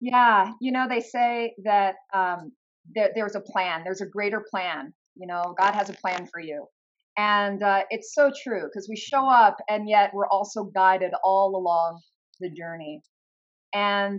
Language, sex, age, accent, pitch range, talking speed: English, female, 40-59, American, 190-245 Hz, 180 wpm